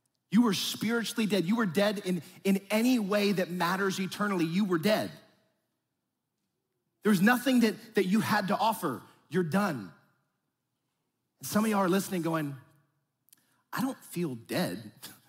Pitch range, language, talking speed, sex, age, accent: 145-200 Hz, English, 150 wpm, male, 30-49, American